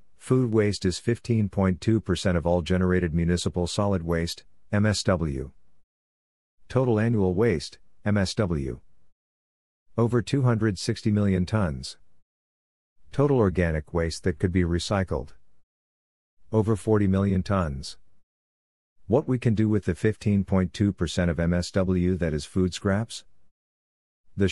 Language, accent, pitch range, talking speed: English, American, 80-105 Hz, 110 wpm